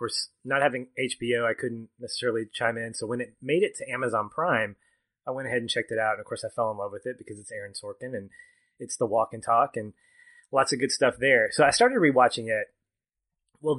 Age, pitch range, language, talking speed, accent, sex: 30-49, 110-140 Hz, English, 245 wpm, American, male